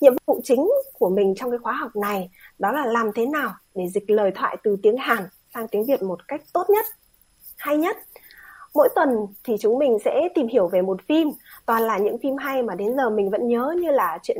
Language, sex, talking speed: Vietnamese, female, 235 wpm